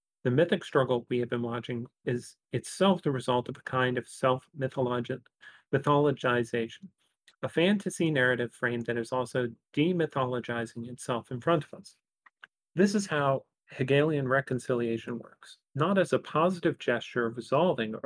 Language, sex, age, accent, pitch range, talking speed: English, male, 40-59, American, 120-145 Hz, 145 wpm